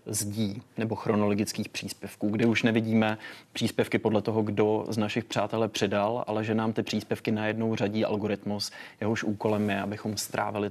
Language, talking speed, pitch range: Czech, 155 wpm, 100-115 Hz